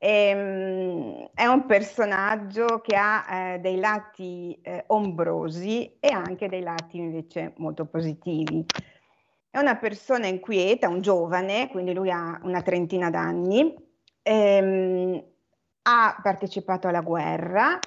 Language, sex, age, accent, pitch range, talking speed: Italian, female, 30-49, native, 180-220 Hz, 110 wpm